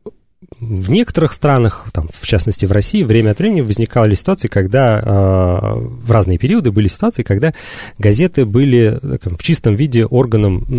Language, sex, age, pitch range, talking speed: Russian, male, 30-49, 100-125 Hz, 145 wpm